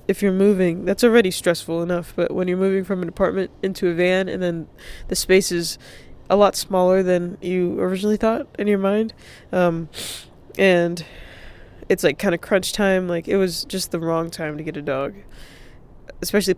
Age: 20-39